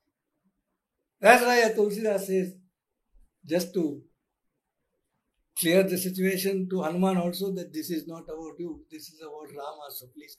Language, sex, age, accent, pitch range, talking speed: Hindi, male, 60-79, native, 165-210 Hz, 145 wpm